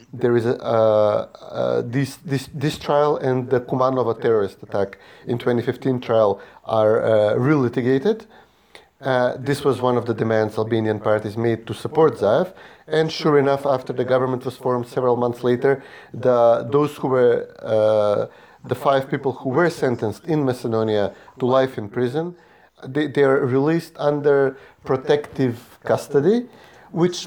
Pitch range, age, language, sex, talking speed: 120-145 Hz, 30-49, English, male, 140 wpm